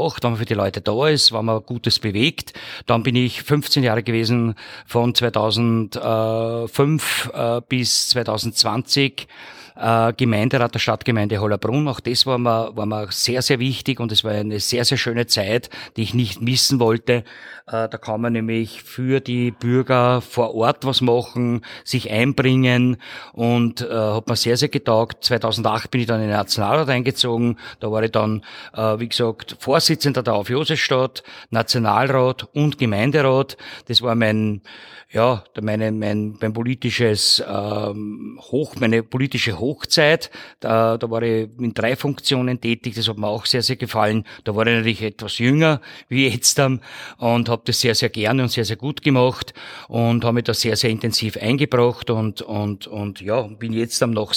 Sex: male